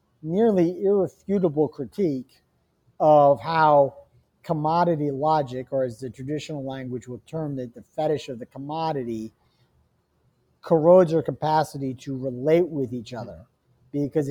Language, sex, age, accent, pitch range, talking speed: English, male, 50-69, American, 135-160 Hz, 120 wpm